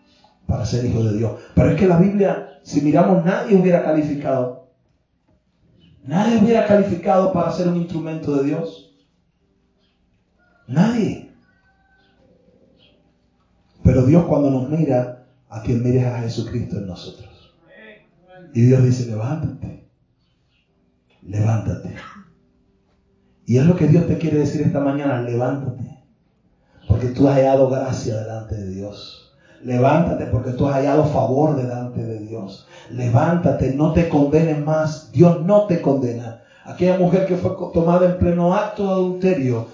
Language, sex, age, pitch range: Spanish, male, 30-49, 125-180 Hz